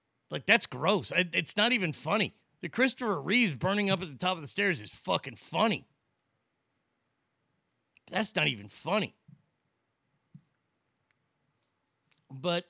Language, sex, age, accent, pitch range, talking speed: English, male, 40-59, American, 145-200 Hz, 125 wpm